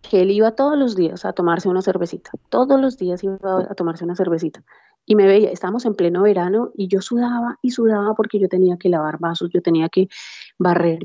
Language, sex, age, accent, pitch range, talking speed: Spanish, female, 30-49, Colombian, 170-210 Hz, 215 wpm